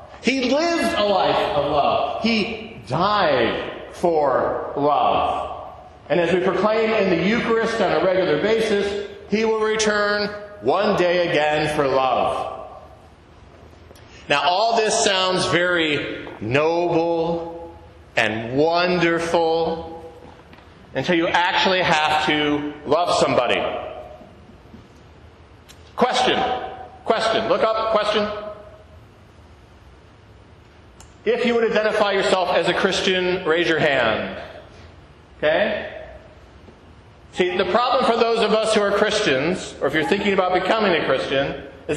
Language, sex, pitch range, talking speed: English, male, 145-205 Hz, 115 wpm